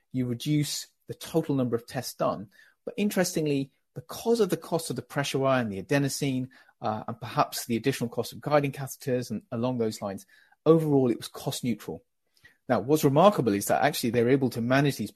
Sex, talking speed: male, 200 wpm